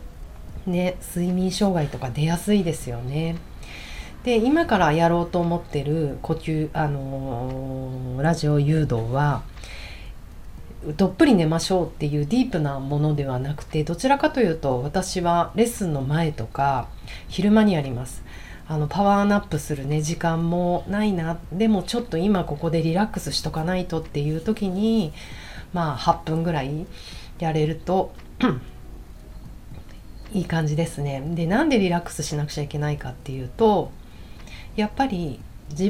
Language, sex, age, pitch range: Japanese, female, 40-59, 145-190 Hz